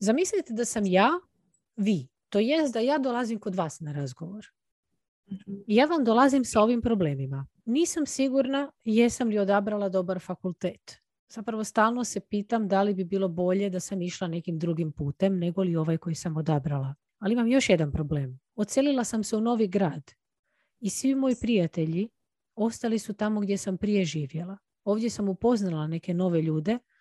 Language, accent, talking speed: Croatian, native, 170 wpm